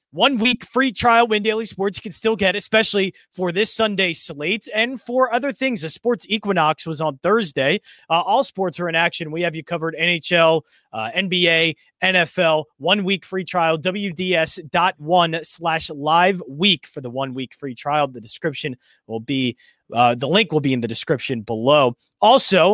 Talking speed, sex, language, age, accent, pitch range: 175 wpm, male, English, 20-39, American, 155-210 Hz